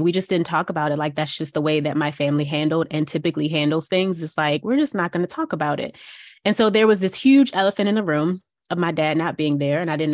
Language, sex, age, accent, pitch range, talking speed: English, female, 20-39, American, 160-185 Hz, 285 wpm